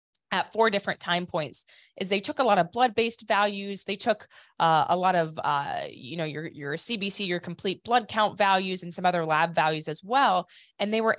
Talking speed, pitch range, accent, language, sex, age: 215 wpm, 165-210 Hz, American, English, female, 20-39